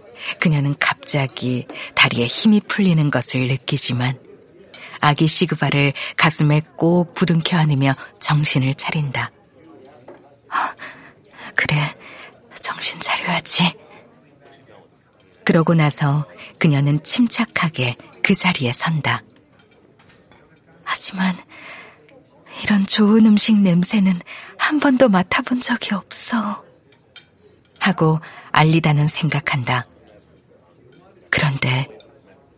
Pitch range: 145-190 Hz